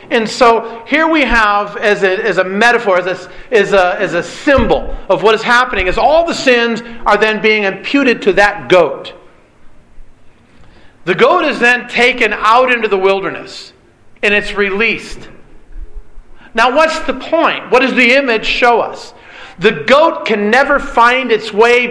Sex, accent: male, American